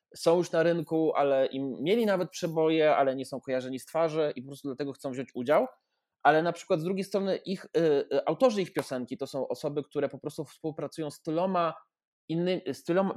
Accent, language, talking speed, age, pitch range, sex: native, Polish, 190 wpm, 20-39, 135-175 Hz, male